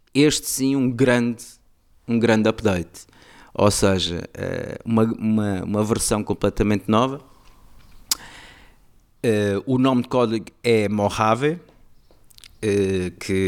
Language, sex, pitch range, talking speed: Portuguese, male, 95-115 Hz, 95 wpm